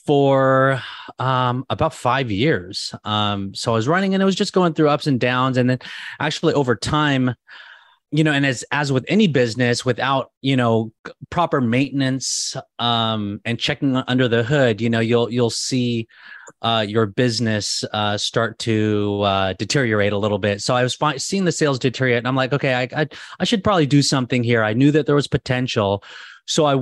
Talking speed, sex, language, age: 190 wpm, male, English, 30-49